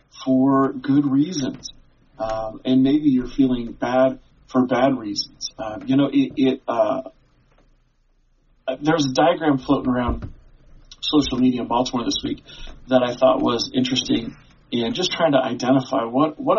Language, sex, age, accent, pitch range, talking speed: English, male, 40-59, American, 125-145 Hz, 150 wpm